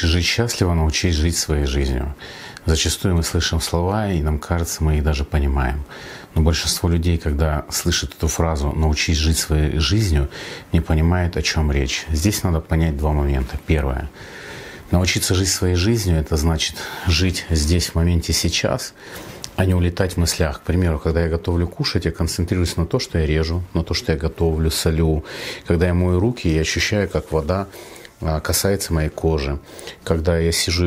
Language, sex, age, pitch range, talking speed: Russian, male, 40-59, 80-90 Hz, 170 wpm